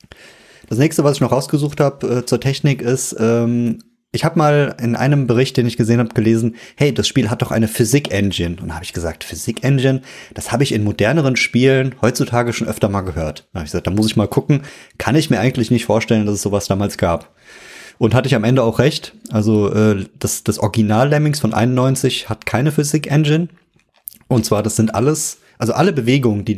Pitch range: 110-135 Hz